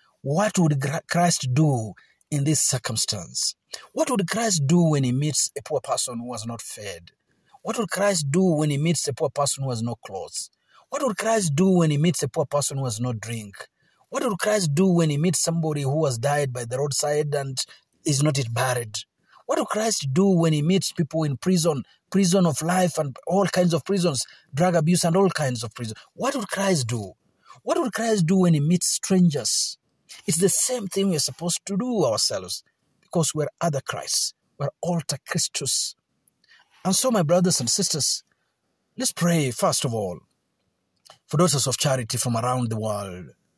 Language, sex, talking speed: Swahili, male, 195 wpm